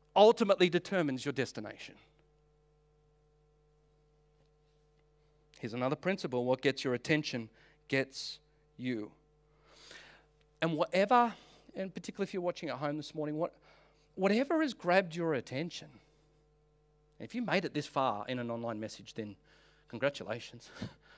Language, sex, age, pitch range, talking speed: English, male, 40-59, 150-200 Hz, 120 wpm